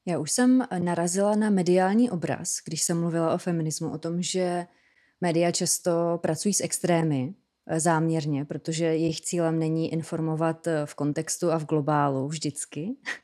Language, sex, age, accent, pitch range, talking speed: Czech, female, 20-39, native, 165-190 Hz, 145 wpm